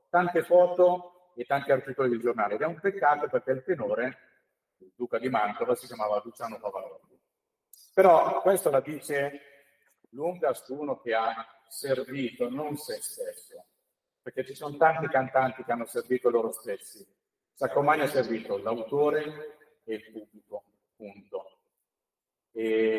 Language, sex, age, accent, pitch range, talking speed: Italian, male, 50-69, native, 115-180 Hz, 140 wpm